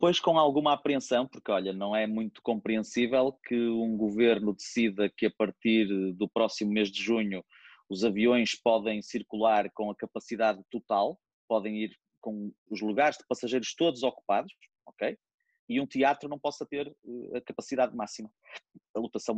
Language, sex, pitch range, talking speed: Portuguese, male, 105-130 Hz, 160 wpm